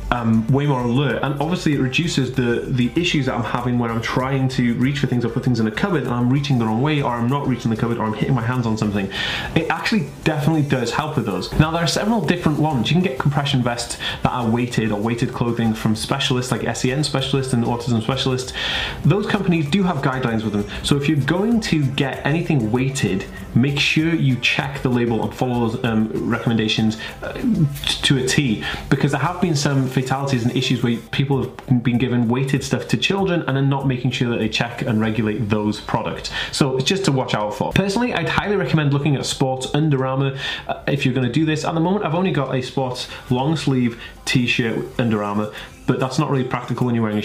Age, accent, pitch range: 20-39, British, 120-145 Hz